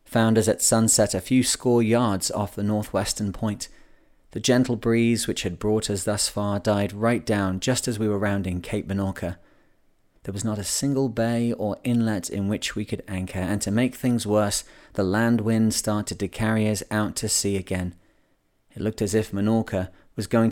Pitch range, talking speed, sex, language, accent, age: 100-115 Hz, 195 wpm, male, English, British, 30-49